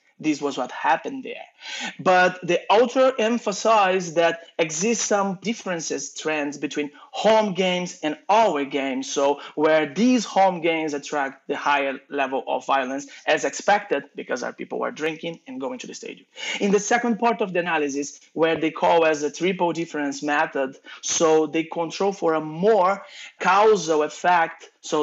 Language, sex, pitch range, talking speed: English, male, 155-200 Hz, 160 wpm